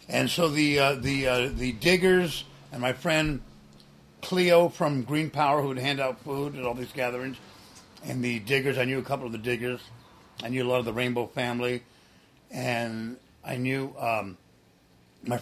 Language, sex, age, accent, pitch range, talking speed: English, male, 60-79, American, 115-150 Hz, 185 wpm